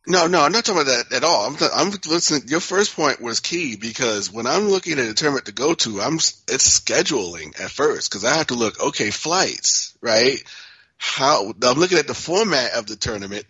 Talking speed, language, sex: 220 wpm, English, male